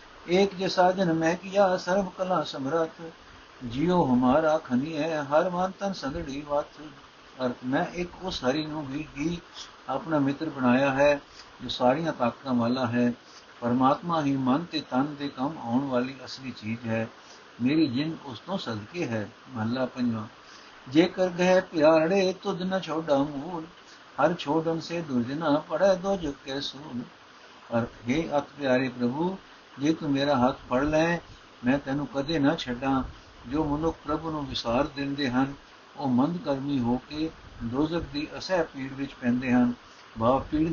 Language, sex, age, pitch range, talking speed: Punjabi, male, 60-79, 130-170 Hz, 150 wpm